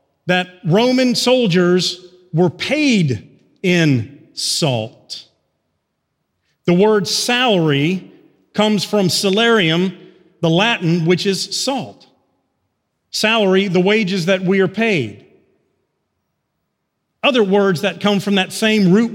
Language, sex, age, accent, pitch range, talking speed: English, male, 40-59, American, 175-220 Hz, 105 wpm